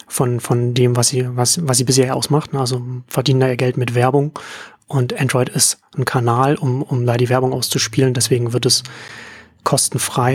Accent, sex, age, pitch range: German, male, 30-49, 125-140 Hz